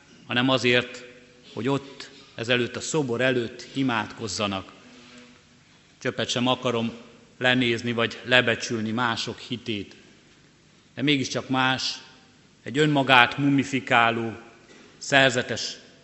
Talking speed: 90 wpm